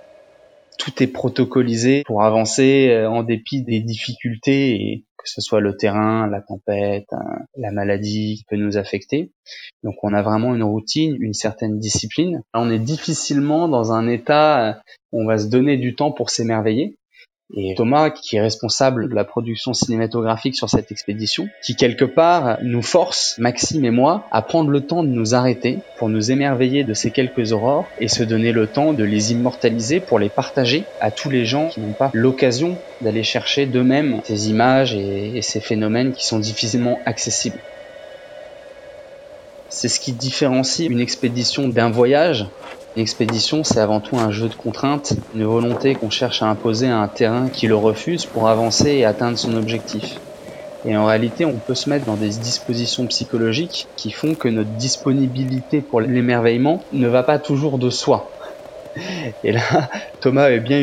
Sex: male